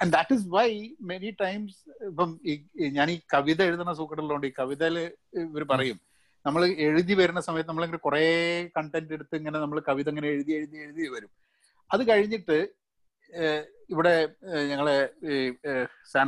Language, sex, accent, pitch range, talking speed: Malayalam, male, native, 145-180 Hz, 135 wpm